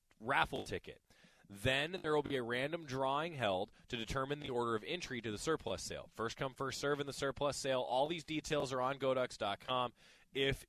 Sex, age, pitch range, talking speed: male, 20-39, 115-145 Hz, 195 wpm